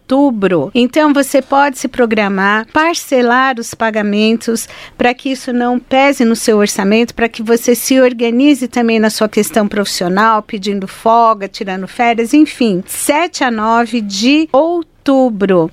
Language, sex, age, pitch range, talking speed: Portuguese, female, 40-59, 220-270 Hz, 135 wpm